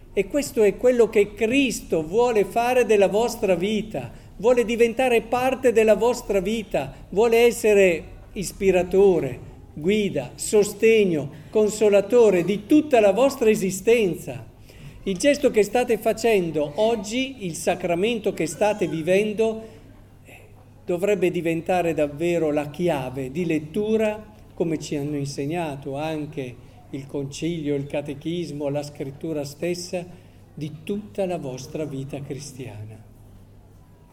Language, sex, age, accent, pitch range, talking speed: Italian, male, 50-69, native, 140-200 Hz, 115 wpm